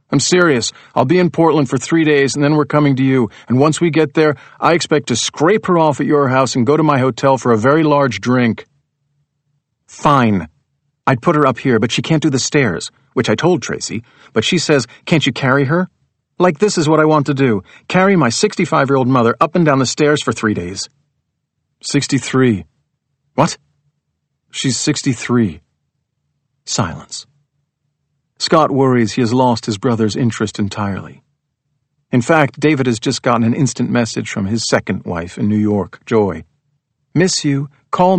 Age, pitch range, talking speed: 40-59, 120-145 Hz, 180 wpm